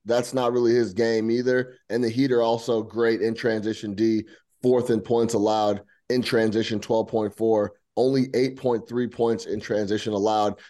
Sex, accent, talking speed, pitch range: male, American, 180 wpm, 110-135 Hz